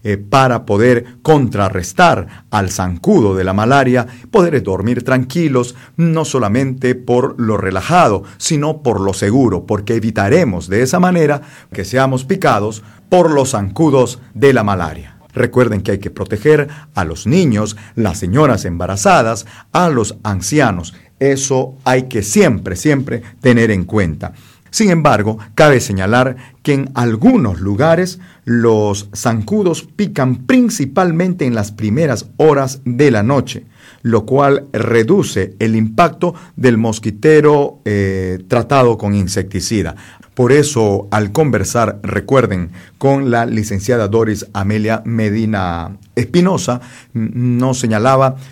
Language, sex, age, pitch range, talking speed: Spanish, male, 50-69, 105-135 Hz, 125 wpm